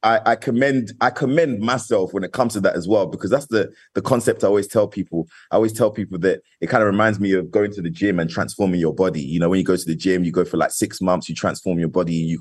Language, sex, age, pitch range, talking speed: English, male, 20-39, 80-95 Hz, 290 wpm